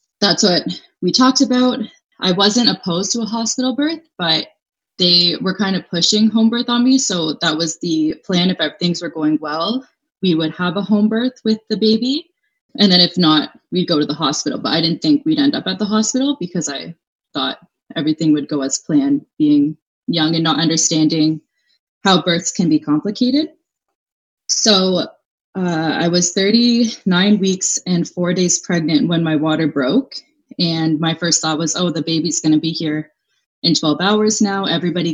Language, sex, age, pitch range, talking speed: English, female, 20-39, 160-220 Hz, 185 wpm